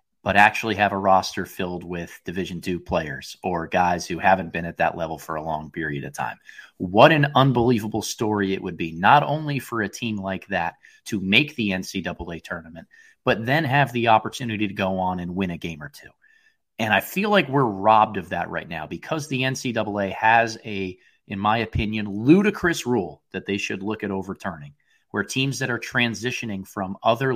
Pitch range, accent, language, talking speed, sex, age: 95-120 Hz, American, English, 195 wpm, male, 30-49